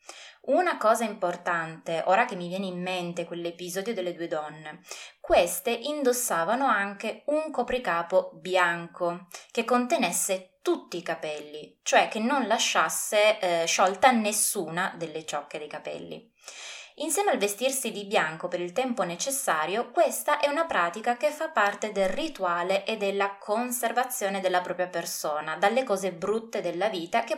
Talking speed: 140 wpm